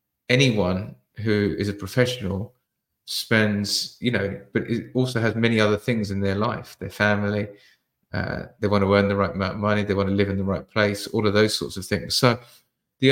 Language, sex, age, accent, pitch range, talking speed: English, male, 30-49, British, 100-115 Hz, 210 wpm